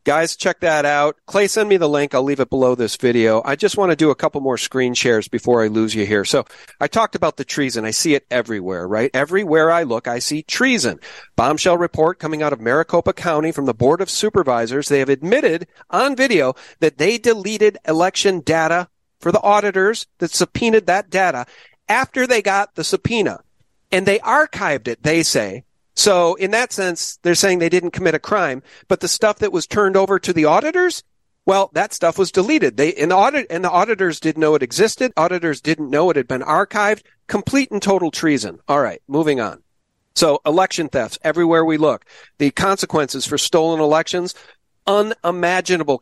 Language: English